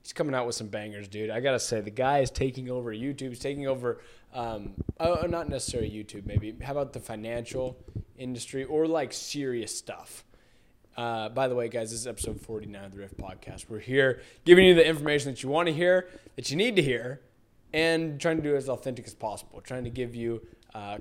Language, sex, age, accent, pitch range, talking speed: English, male, 20-39, American, 110-135 Hz, 215 wpm